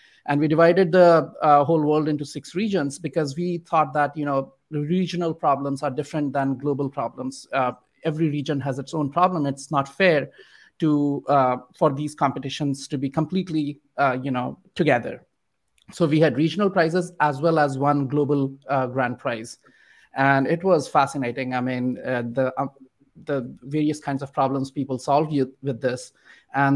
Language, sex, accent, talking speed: English, male, Indian, 175 wpm